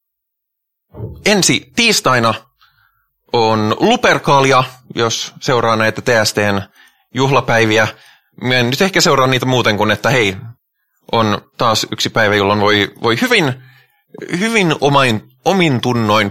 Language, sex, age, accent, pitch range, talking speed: Finnish, male, 20-39, native, 100-130 Hz, 105 wpm